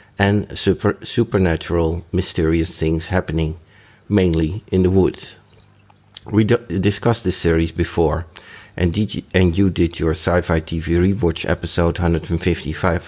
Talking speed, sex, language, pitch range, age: 125 wpm, male, English, 85-100 Hz, 60-79